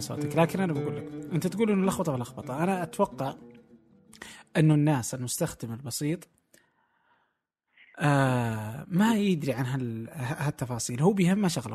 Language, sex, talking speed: Arabic, male, 110 wpm